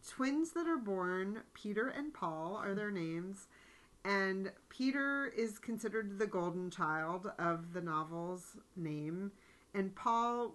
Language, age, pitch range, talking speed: English, 40-59, 160-190 Hz, 130 wpm